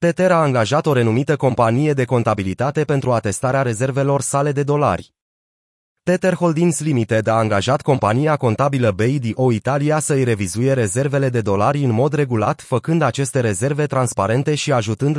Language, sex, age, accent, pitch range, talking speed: Romanian, male, 30-49, native, 115-145 Hz, 145 wpm